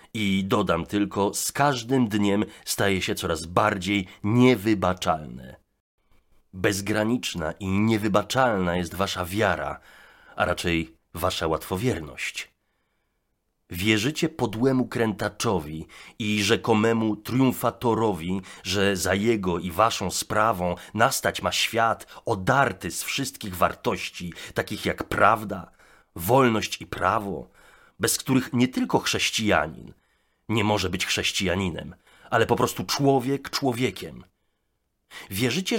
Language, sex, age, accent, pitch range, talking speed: Polish, male, 30-49, native, 90-125 Hz, 100 wpm